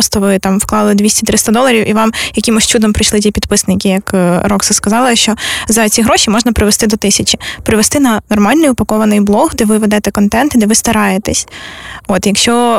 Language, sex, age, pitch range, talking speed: Ukrainian, female, 20-39, 215-250 Hz, 185 wpm